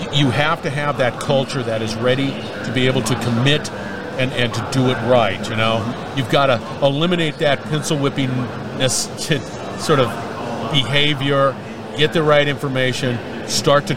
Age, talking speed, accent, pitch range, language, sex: 50-69, 170 wpm, American, 115-150 Hz, English, male